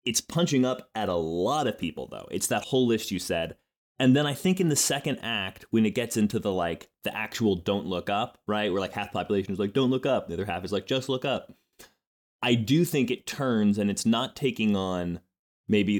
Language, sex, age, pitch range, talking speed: English, male, 20-39, 95-125 Hz, 240 wpm